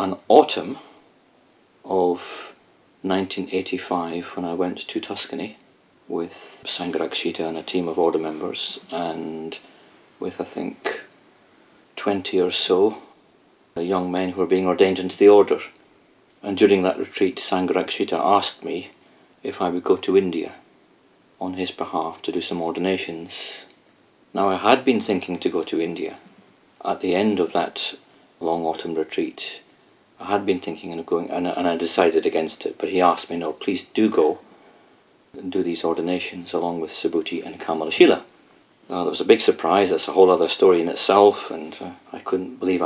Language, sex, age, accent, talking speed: English, male, 40-59, British, 170 wpm